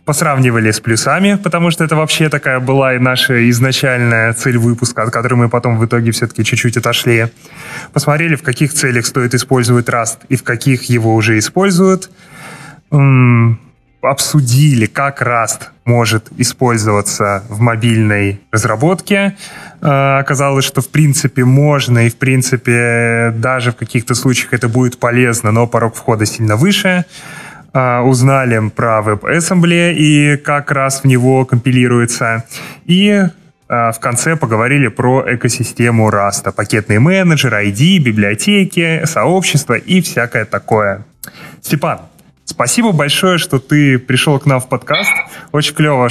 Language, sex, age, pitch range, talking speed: Russian, male, 20-39, 120-145 Hz, 135 wpm